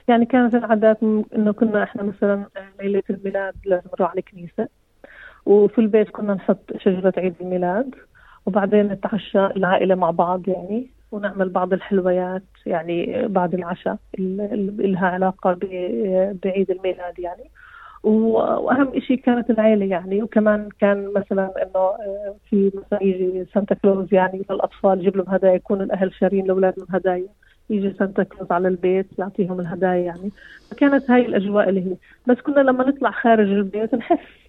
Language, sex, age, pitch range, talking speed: Arabic, female, 30-49, 190-220 Hz, 140 wpm